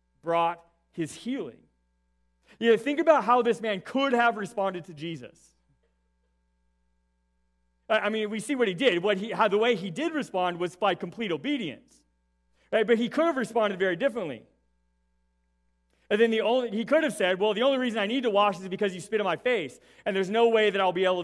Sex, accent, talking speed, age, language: male, American, 205 wpm, 30-49, English